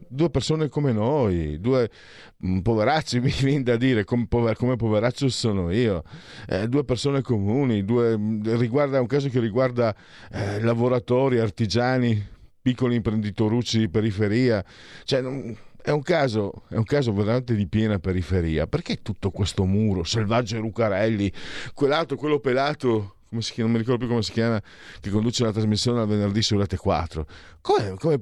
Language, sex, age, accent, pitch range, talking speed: Italian, male, 40-59, native, 95-125 Hz, 155 wpm